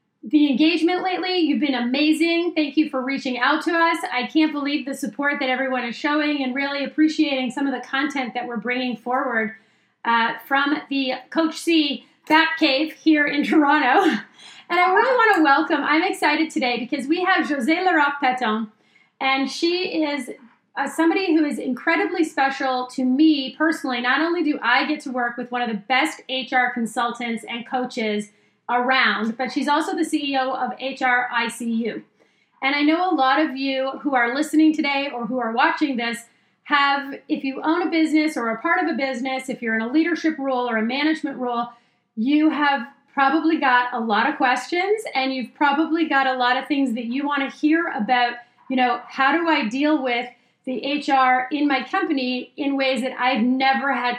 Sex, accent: female, American